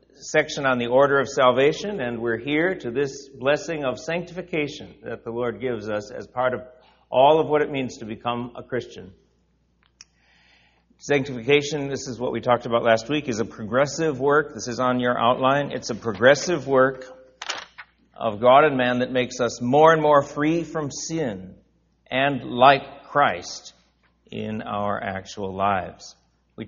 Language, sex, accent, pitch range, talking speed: English, male, American, 110-145 Hz, 165 wpm